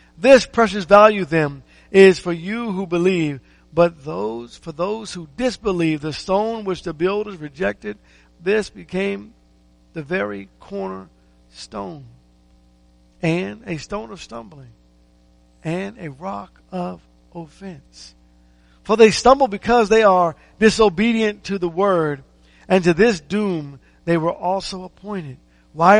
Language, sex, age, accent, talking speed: English, male, 50-69, American, 130 wpm